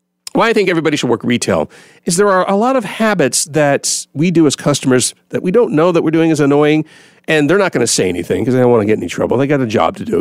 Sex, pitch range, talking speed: male, 115-160 Hz, 295 wpm